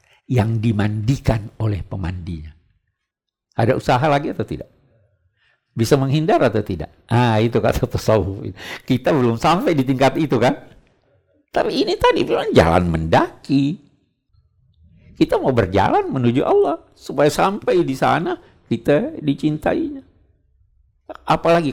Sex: male